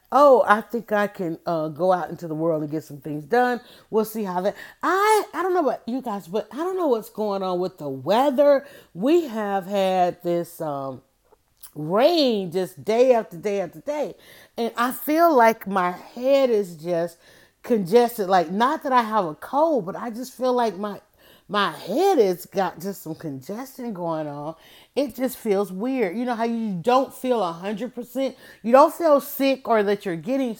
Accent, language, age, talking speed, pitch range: American, English, 30-49, 195 wpm, 175-245 Hz